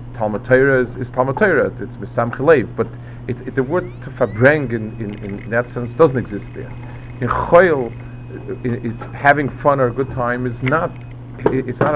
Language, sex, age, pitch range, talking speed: English, male, 50-69, 115-130 Hz, 165 wpm